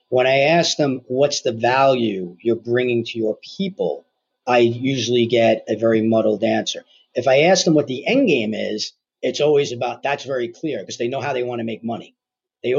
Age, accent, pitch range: 40-59, American, 115-150 Hz